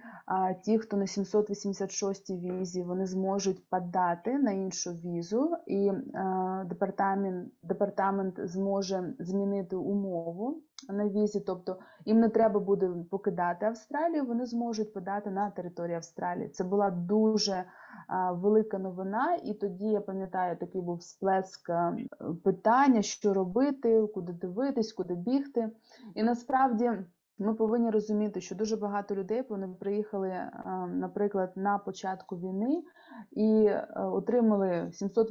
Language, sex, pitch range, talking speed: Ukrainian, female, 190-225 Hz, 115 wpm